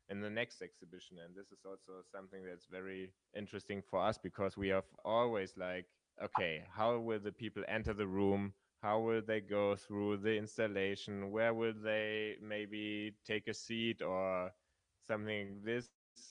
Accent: German